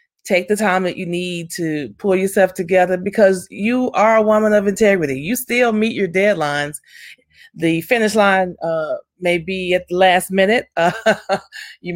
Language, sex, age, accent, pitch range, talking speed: English, female, 30-49, American, 165-200 Hz, 170 wpm